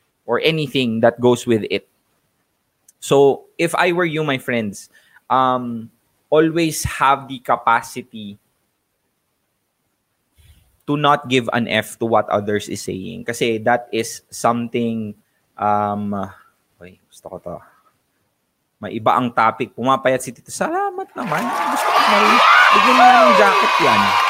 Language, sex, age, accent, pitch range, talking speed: English, male, 20-39, Filipino, 115-165 Hz, 130 wpm